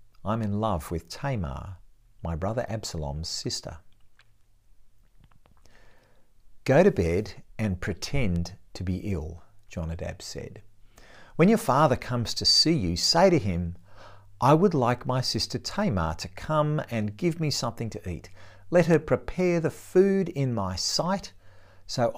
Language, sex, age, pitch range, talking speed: English, male, 50-69, 90-125 Hz, 140 wpm